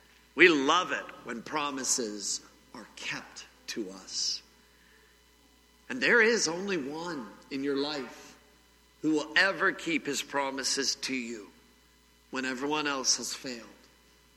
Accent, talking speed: American, 125 wpm